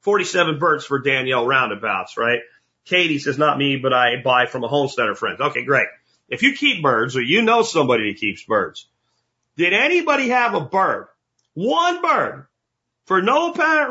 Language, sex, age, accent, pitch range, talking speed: English, male, 40-59, American, 135-185 Hz, 175 wpm